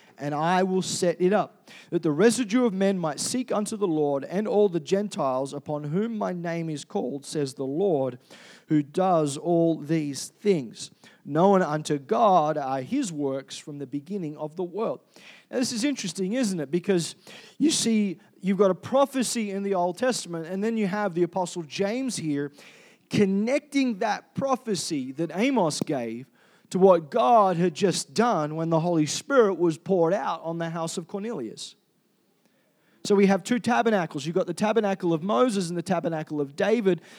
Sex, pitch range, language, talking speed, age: male, 165-215 Hz, English, 180 wpm, 40-59